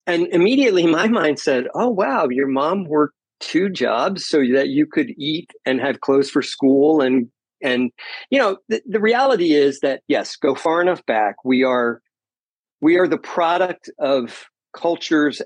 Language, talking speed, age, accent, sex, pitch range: English, 170 wpm, 50-69, American, male, 130-170 Hz